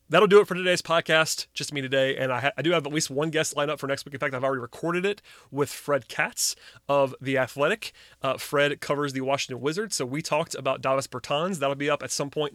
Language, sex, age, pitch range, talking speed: English, male, 30-49, 135-160 Hz, 255 wpm